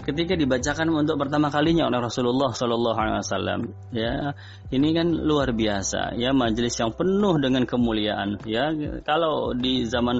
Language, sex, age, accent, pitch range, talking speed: Indonesian, male, 20-39, native, 110-145 Hz, 135 wpm